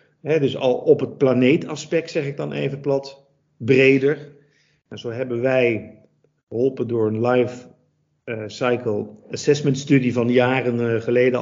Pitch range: 125-150 Hz